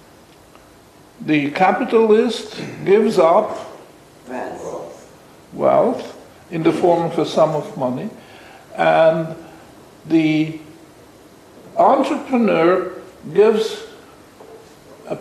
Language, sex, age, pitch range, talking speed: English, male, 60-79, 165-225 Hz, 70 wpm